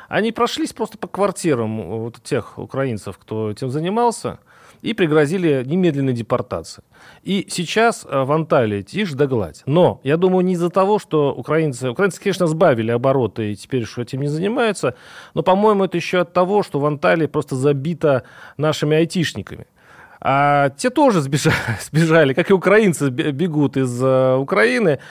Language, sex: Russian, male